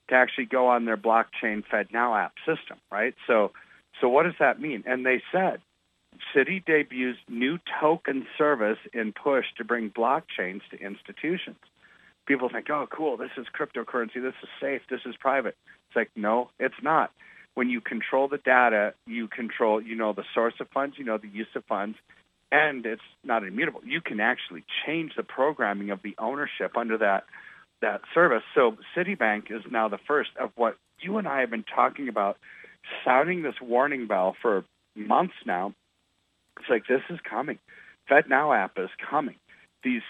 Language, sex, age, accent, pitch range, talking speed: English, male, 40-59, American, 110-140 Hz, 175 wpm